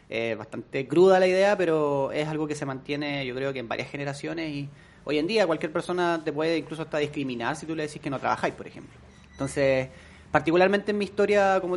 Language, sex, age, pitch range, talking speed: Spanish, male, 30-49, 135-165 Hz, 220 wpm